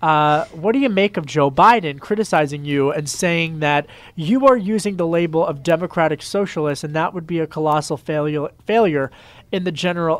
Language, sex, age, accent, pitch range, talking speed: English, male, 30-49, American, 150-180 Hz, 190 wpm